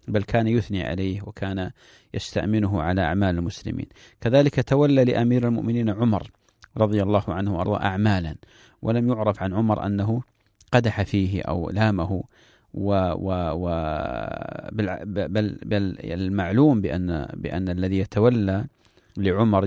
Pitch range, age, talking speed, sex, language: 95-110 Hz, 40-59, 110 wpm, male, English